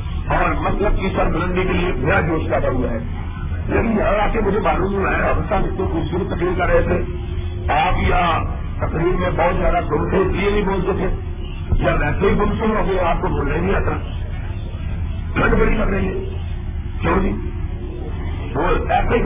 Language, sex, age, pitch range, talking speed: Urdu, male, 50-69, 85-95 Hz, 165 wpm